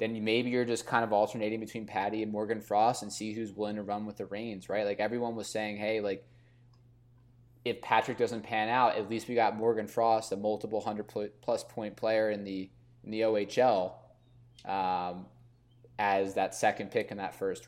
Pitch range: 105-120 Hz